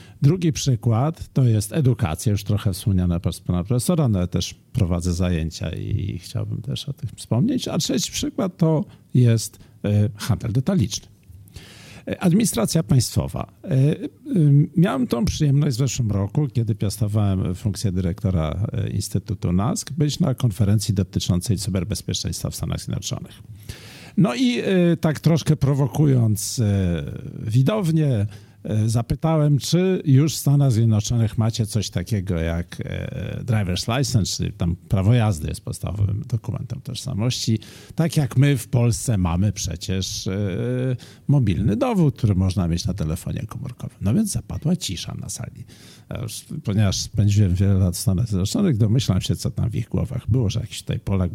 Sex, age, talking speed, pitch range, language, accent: male, 50-69, 140 wpm, 100-135 Hz, Polish, native